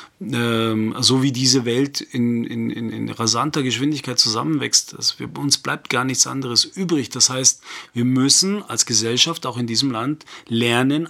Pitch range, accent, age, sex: 120-190 Hz, German, 40-59, male